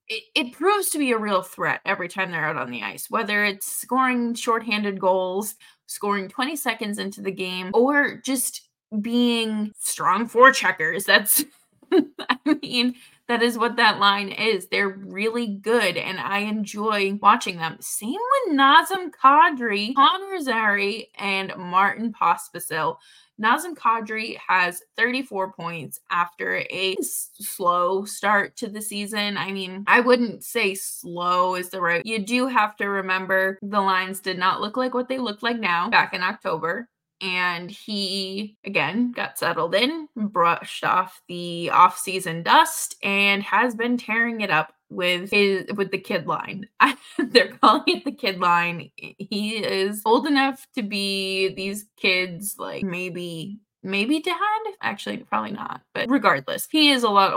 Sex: female